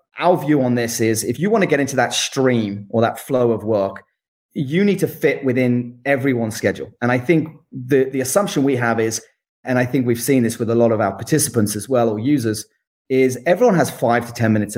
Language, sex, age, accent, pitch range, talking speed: English, male, 30-49, British, 115-140 Hz, 230 wpm